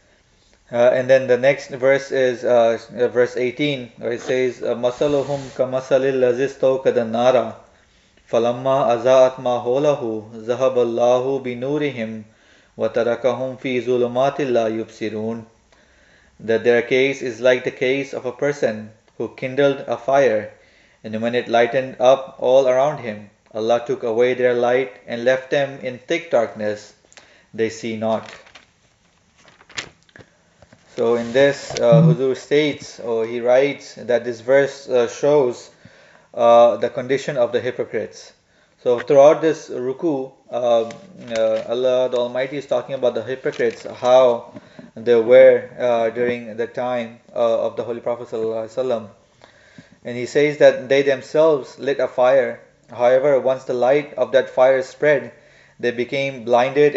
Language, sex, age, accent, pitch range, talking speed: English, male, 30-49, Indian, 120-135 Hz, 120 wpm